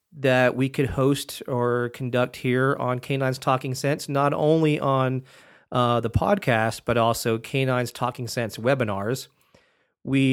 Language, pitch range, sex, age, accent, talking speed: English, 115-135 Hz, male, 40-59, American, 140 wpm